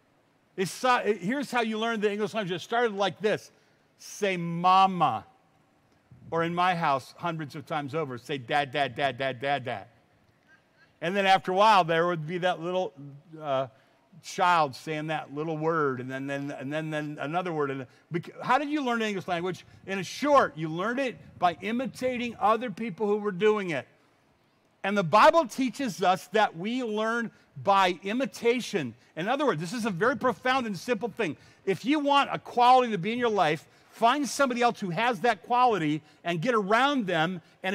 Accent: American